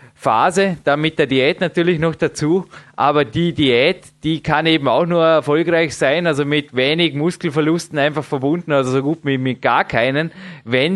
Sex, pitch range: male, 145-165 Hz